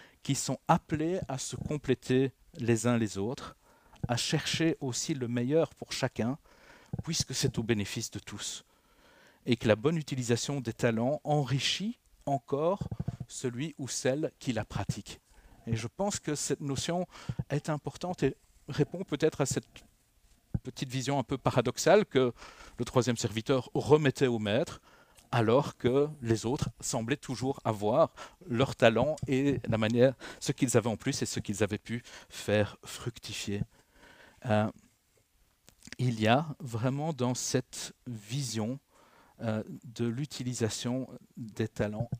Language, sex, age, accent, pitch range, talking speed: French, male, 50-69, French, 115-140 Hz, 140 wpm